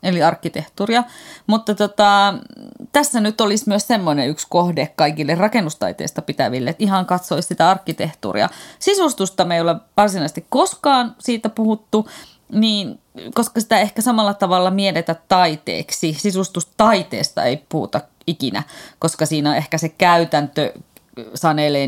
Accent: native